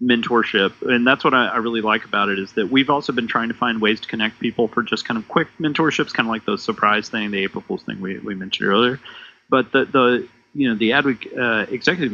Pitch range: 105-125 Hz